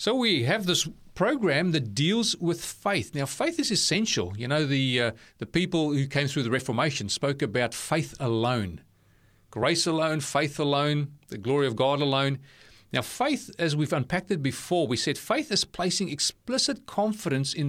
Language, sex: English, male